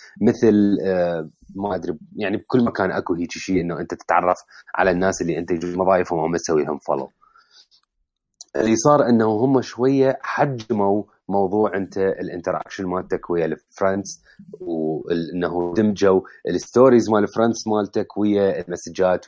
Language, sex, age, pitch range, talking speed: Arabic, male, 30-49, 90-110 Hz, 135 wpm